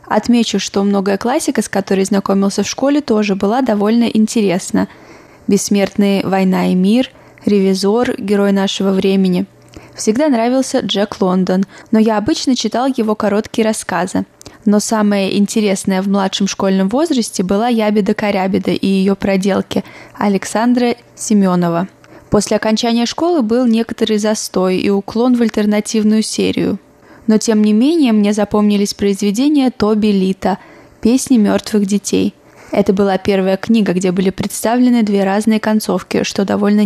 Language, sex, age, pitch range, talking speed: Russian, female, 20-39, 200-230 Hz, 130 wpm